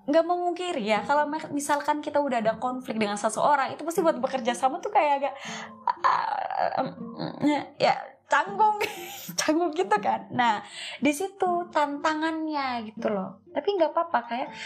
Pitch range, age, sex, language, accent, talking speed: 200-305 Hz, 20-39, female, Indonesian, native, 150 wpm